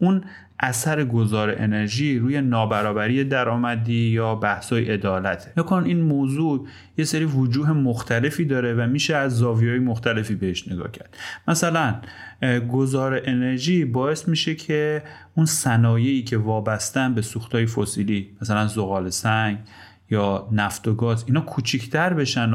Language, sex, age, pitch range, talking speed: Persian, male, 30-49, 105-140 Hz, 135 wpm